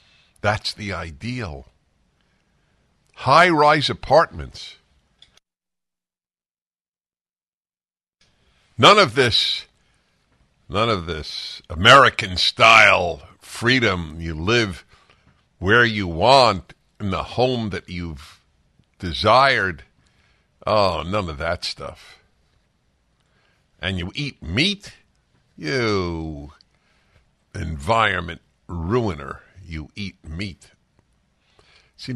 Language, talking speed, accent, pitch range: English, 75 wpm, American, 80-115 Hz